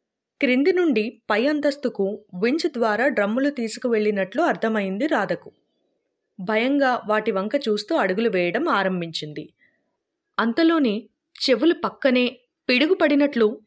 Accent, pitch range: native, 210-285 Hz